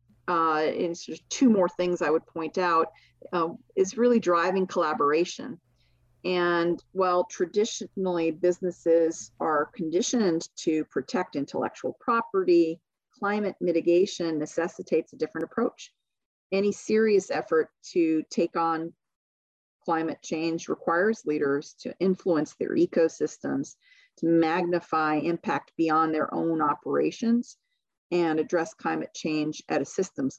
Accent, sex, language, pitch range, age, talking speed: American, female, English, 150-185 Hz, 40-59, 120 wpm